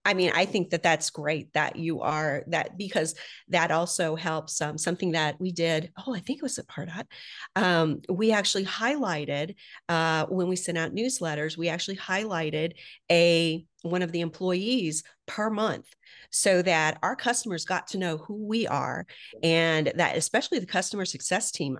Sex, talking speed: female, 180 wpm